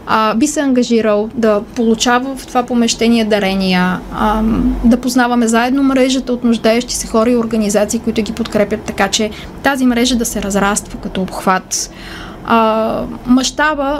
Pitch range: 210-250 Hz